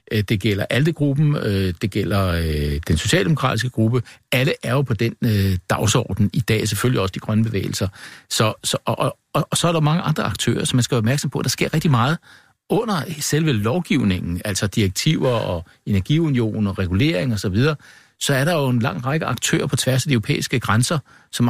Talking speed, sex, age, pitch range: 190 wpm, male, 60-79, 110-145 Hz